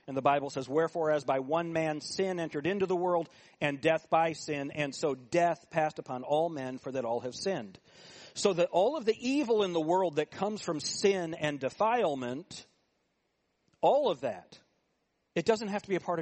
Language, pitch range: English, 150-205 Hz